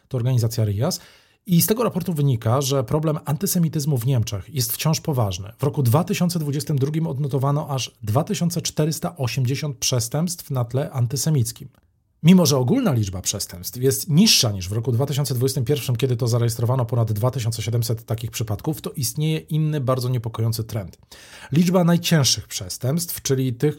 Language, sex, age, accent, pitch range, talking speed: Polish, male, 40-59, native, 115-150 Hz, 140 wpm